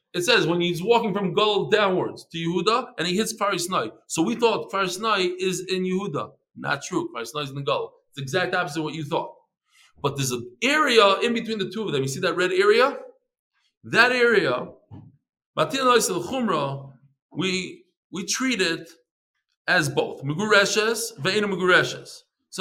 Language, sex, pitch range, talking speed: English, male, 150-225 Hz, 165 wpm